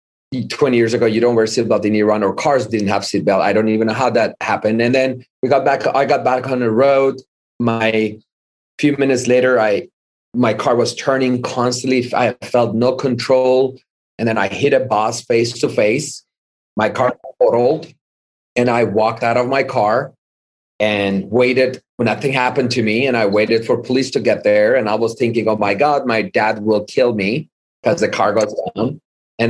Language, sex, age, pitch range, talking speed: English, male, 30-49, 110-130 Hz, 200 wpm